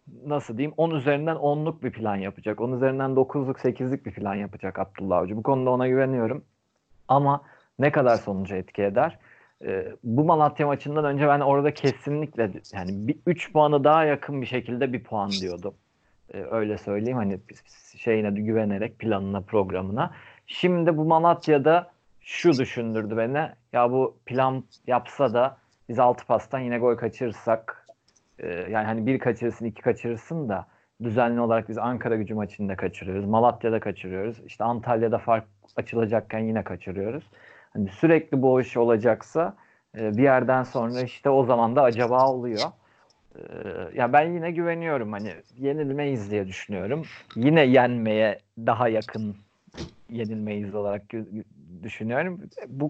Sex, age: male, 40-59